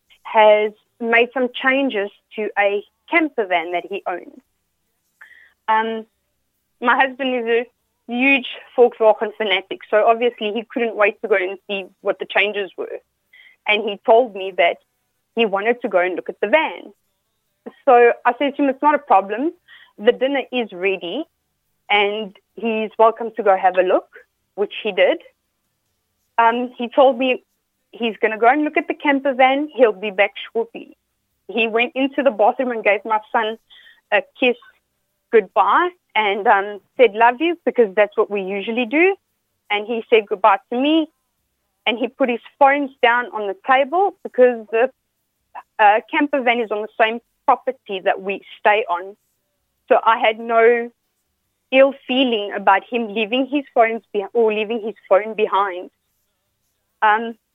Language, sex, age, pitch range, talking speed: English, female, 30-49, 210-270 Hz, 165 wpm